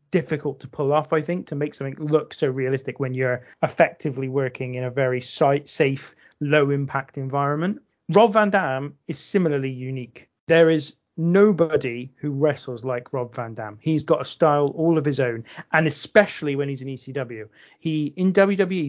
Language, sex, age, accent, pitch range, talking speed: English, male, 30-49, British, 135-165 Hz, 170 wpm